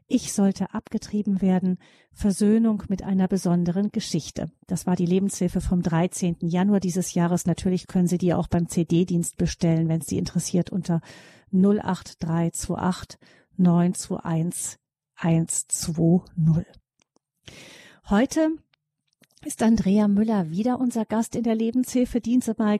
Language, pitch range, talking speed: German, 180-220 Hz, 120 wpm